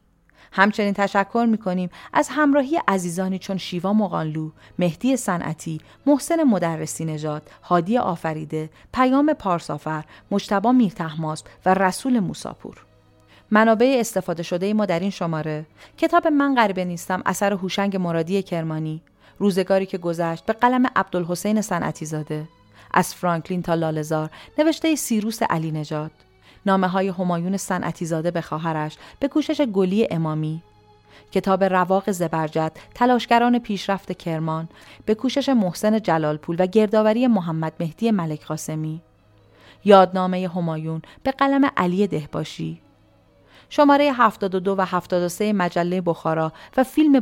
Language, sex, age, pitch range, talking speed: Persian, female, 40-59, 160-215 Hz, 120 wpm